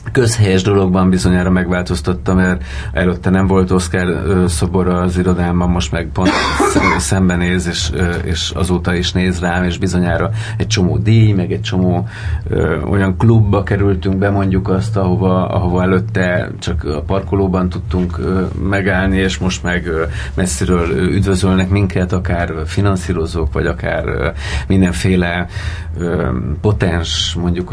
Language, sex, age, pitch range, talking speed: Hungarian, male, 30-49, 90-100 Hz, 125 wpm